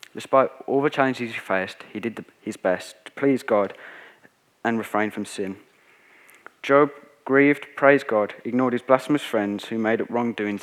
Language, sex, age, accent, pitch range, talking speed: English, male, 20-39, British, 100-130 Hz, 165 wpm